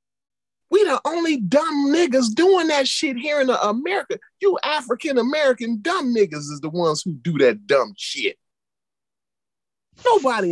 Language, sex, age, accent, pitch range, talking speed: English, male, 30-49, American, 155-245 Hz, 135 wpm